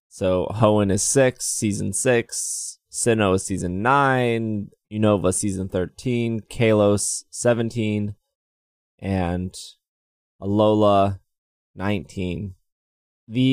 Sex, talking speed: male, 85 wpm